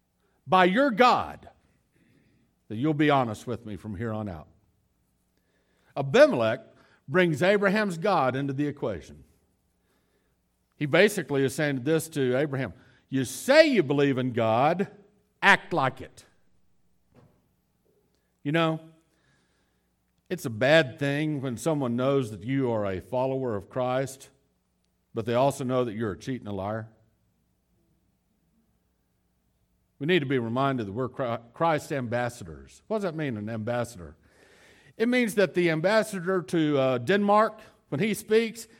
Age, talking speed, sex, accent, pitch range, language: 60-79, 135 wpm, male, American, 110-180 Hz, English